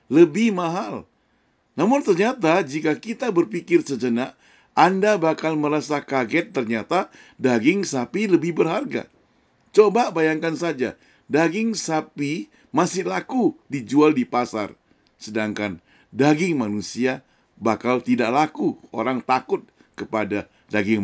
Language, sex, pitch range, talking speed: Indonesian, male, 115-165 Hz, 105 wpm